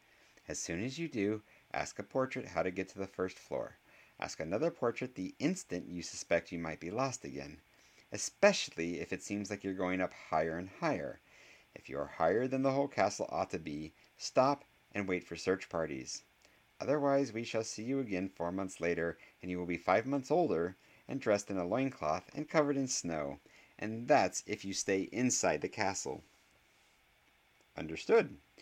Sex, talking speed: male, 185 wpm